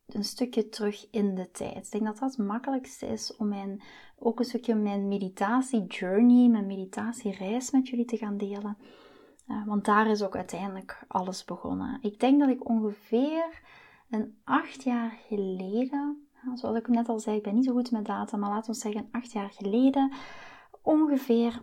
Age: 20-39